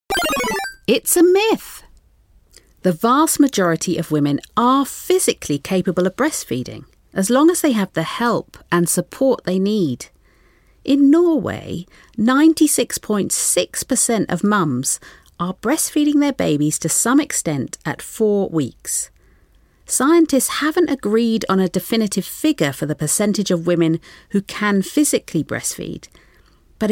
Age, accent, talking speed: 50-69, British, 125 wpm